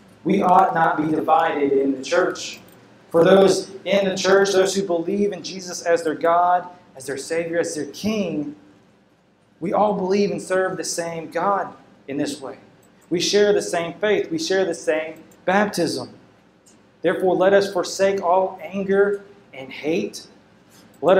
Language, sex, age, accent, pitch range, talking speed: English, male, 30-49, American, 150-190 Hz, 160 wpm